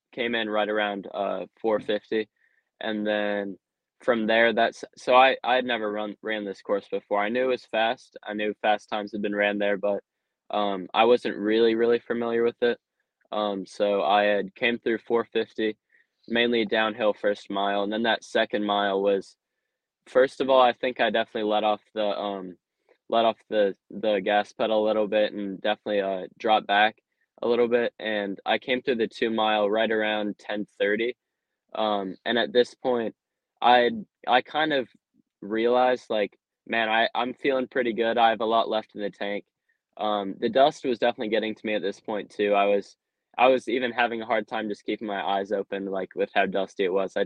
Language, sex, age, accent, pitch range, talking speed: English, male, 10-29, American, 100-115 Hz, 200 wpm